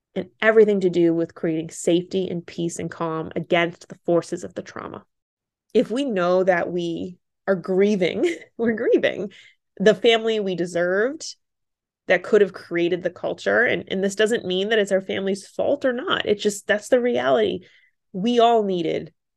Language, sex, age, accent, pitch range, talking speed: English, female, 20-39, American, 175-230 Hz, 175 wpm